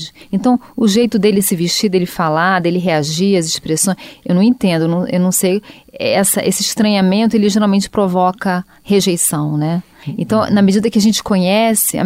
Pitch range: 175-215 Hz